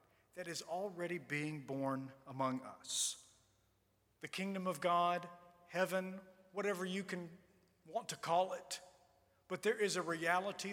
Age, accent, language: 40-59, American, English